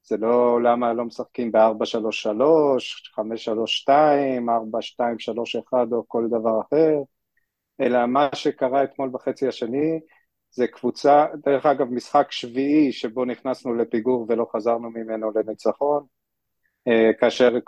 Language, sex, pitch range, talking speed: Hebrew, male, 115-130 Hz, 110 wpm